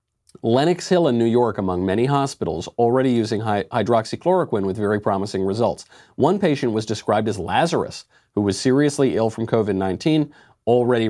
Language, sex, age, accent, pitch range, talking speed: English, male, 40-59, American, 105-160 Hz, 155 wpm